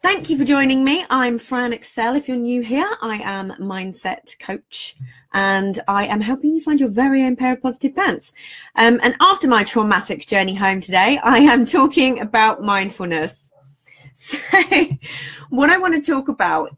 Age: 30-49